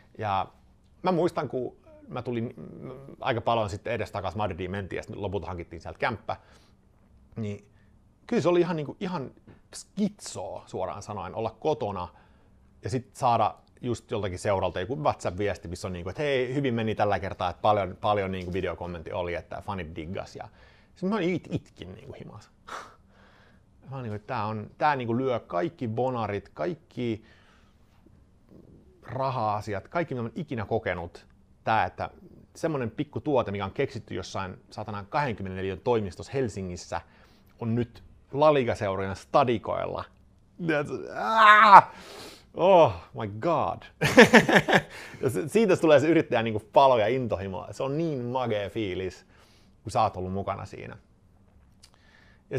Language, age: Finnish, 30-49